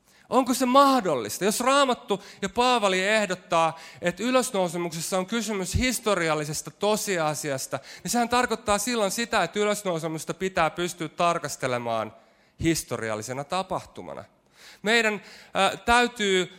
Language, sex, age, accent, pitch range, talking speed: Finnish, male, 30-49, native, 120-190 Hz, 100 wpm